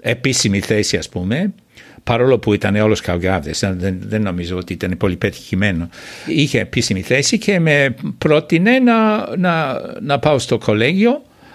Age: 60-79